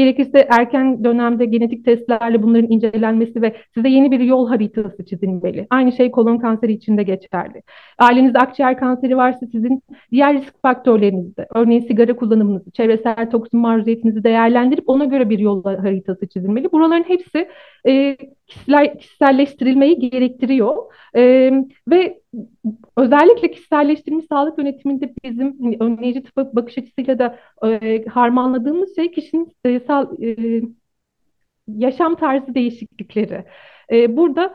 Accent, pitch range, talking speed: native, 230-285 Hz, 110 wpm